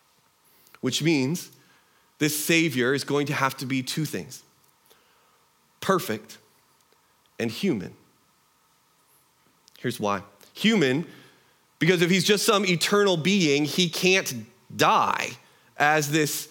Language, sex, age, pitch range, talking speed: English, male, 30-49, 140-175 Hz, 110 wpm